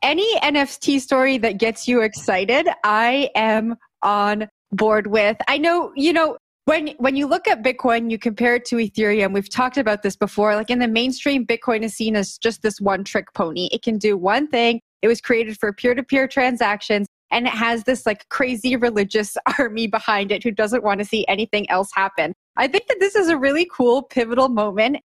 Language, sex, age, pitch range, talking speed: English, female, 20-39, 200-255 Hz, 200 wpm